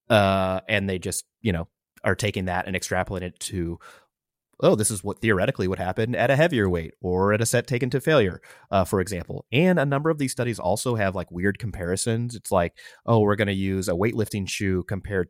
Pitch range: 90-115 Hz